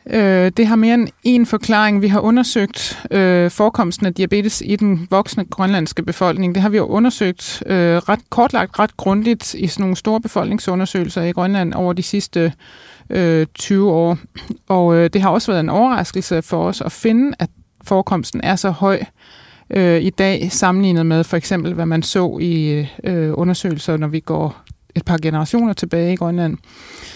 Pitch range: 165-205 Hz